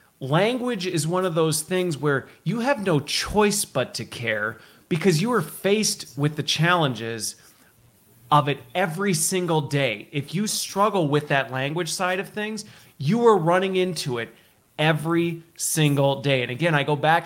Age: 30-49